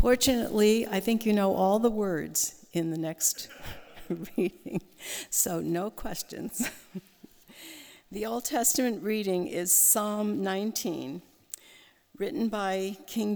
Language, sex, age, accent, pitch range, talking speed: English, female, 60-79, American, 175-230 Hz, 110 wpm